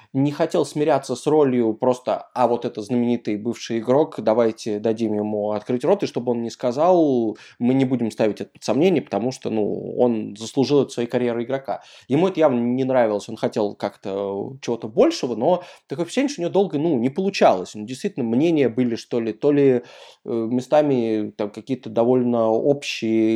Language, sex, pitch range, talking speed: Russian, male, 115-140 Hz, 180 wpm